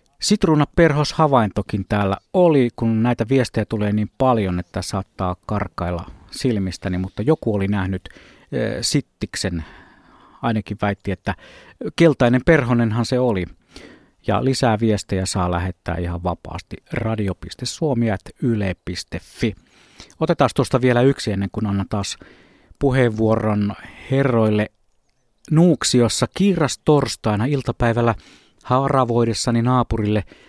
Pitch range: 105-130 Hz